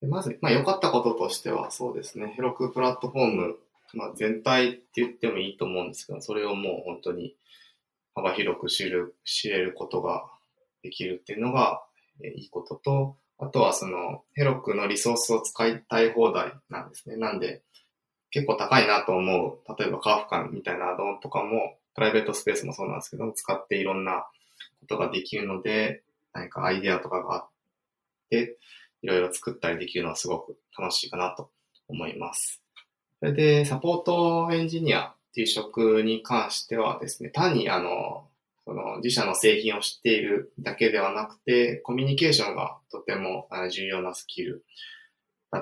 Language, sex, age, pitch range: Japanese, male, 20-39, 105-145 Hz